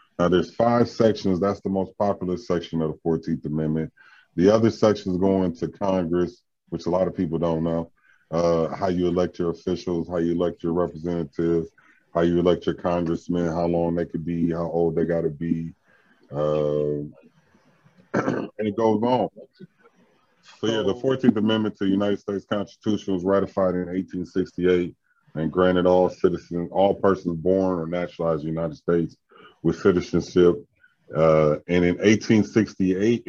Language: English